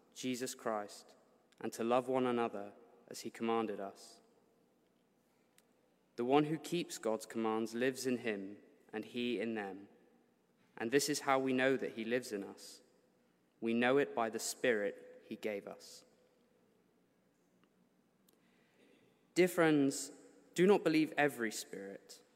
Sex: male